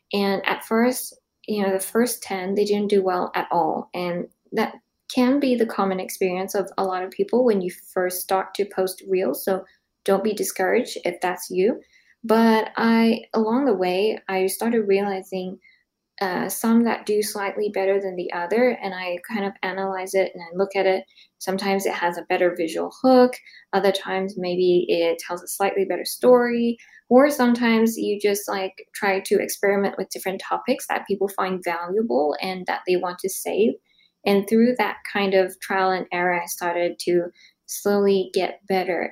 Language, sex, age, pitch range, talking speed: English, female, 10-29, 185-225 Hz, 185 wpm